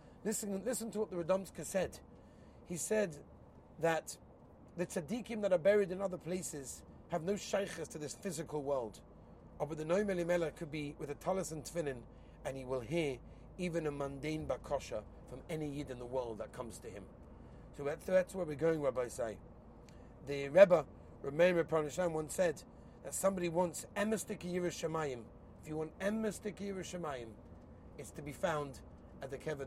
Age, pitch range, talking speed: 30-49, 135-180 Hz, 175 wpm